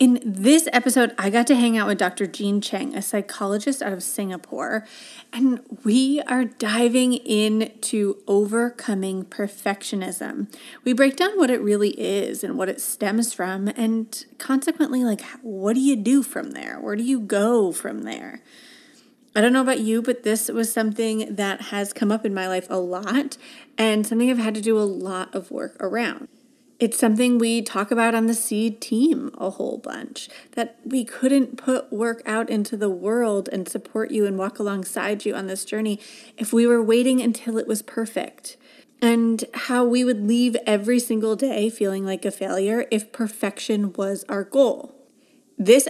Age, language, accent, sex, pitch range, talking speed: 30-49, English, American, female, 205-255 Hz, 180 wpm